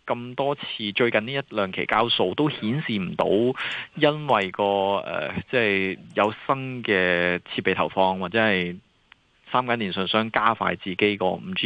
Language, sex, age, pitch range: Chinese, male, 20-39, 95-120 Hz